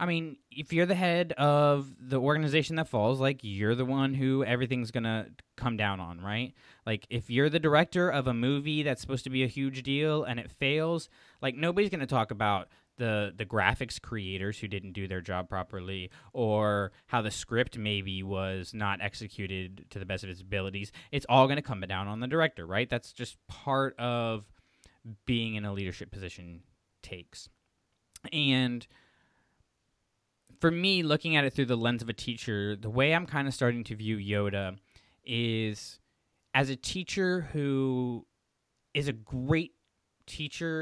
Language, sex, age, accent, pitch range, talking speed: English, male, 20-39, American, 100-135 Hz, 180 wpm